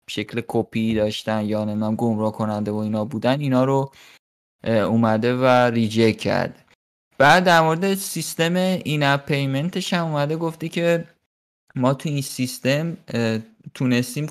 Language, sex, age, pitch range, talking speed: Persian, male, 20-39, 115-155 Hz, 135 wpm